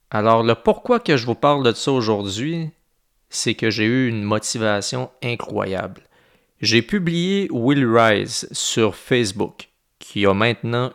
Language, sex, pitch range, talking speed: French, male, 95-115 Hz, 140 wpm